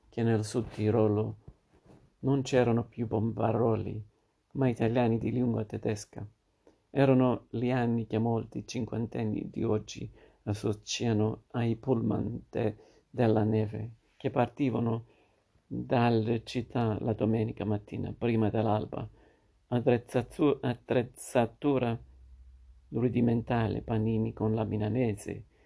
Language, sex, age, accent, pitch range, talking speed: Italian, male, 50-69, native, 110-120 Hz, 95 wpm